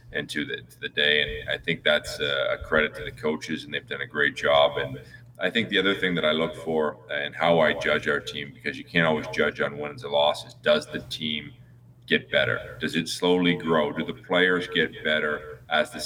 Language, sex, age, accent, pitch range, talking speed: English, male, 30-49, American, 75-85 Hz, 230 wpm